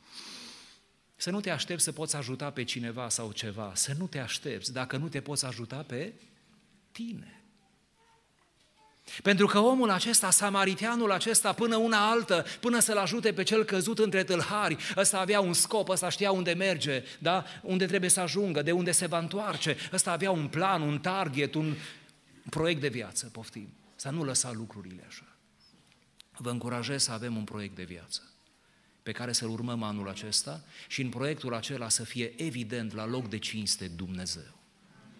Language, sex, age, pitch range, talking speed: Romanian, male, 30-49, 120-195 Hz, 170 wpm